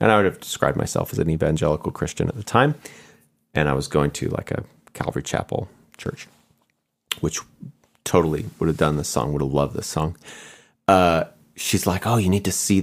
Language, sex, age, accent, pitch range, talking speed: English, male, 30-49, American, 75-95 Hz, 200 wpm